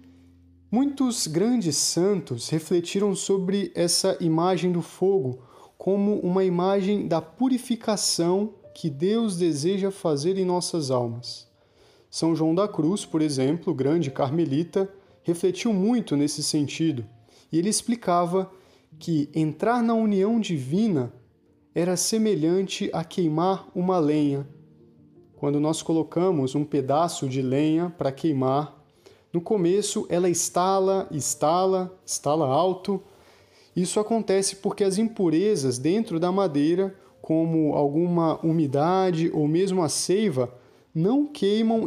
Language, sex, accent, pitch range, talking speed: Portuguese, male, Brazilian, 155-195 Hz, 115 wpm